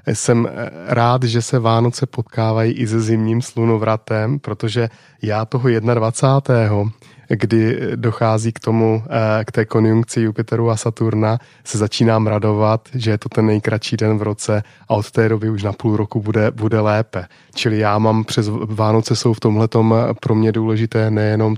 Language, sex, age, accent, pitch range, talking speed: Czech, male, 20-39, native, 110-120 Hz, 160 wpm